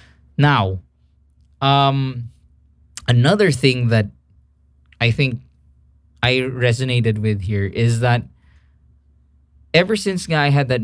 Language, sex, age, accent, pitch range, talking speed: English, male, 20-39, Filipino, 80-120 Hz, 100 wpm